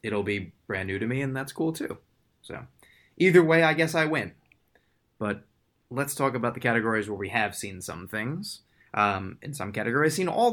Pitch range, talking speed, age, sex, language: 105-145 Hz, 200 wpm, 20-39, male, English